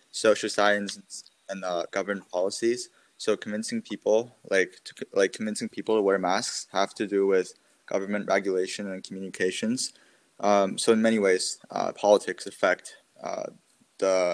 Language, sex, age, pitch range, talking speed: English, male, 20-39, 95-110 Hz, 145 wpm